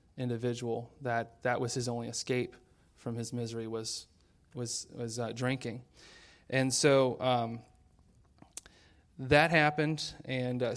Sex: male